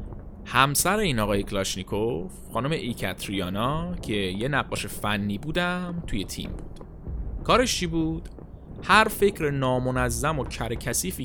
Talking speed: 115 wpm